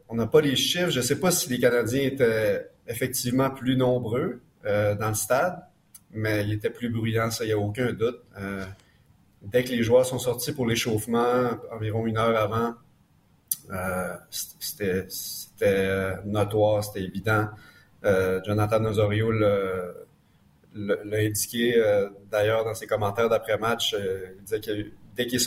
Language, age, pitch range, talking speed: French, 30-49, 105-125 Hz, 160 wpm